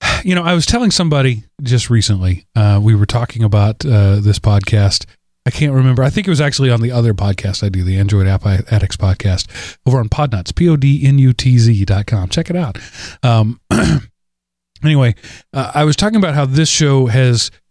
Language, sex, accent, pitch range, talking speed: English, male, American, 105-140 Hz, 185 wpm